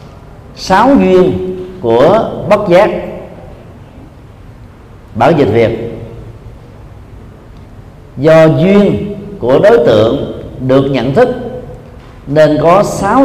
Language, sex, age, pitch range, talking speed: Vietnamese, male, 50-69, 115-150 Hz, 85 wpm